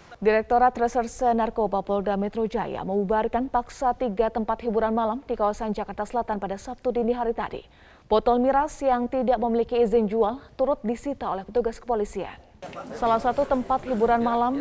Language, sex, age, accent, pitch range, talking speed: Indonesian, female, 30-49, native, 215-250 Hz, 155 wpm